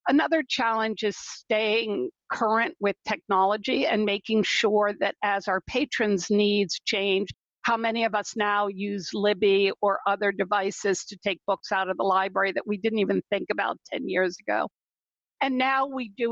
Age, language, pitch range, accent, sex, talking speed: 50-69, English, 195-225 Hz, American, female, 170 wpm